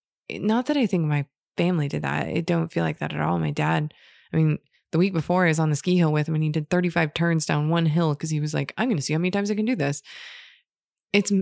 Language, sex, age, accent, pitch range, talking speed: English, female, 20-39, American, 150-175 Hz, 285 wpm